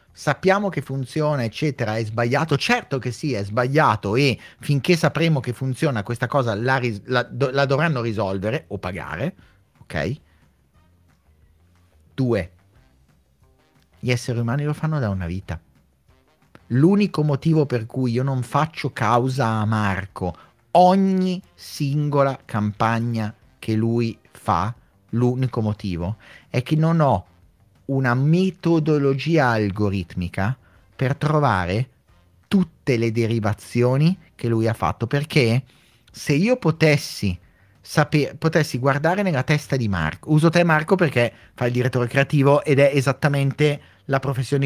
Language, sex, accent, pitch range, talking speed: Italian, male, native, 105-150 Hz, 125 wpm